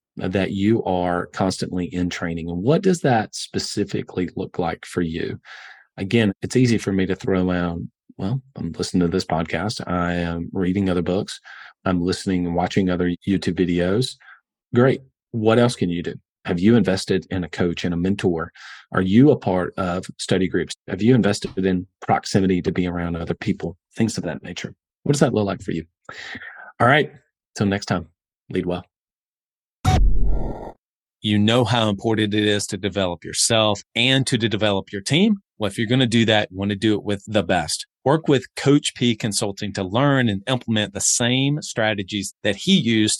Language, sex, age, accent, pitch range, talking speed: English, male, 40-59, American, 95-120 Hz, 190 wpm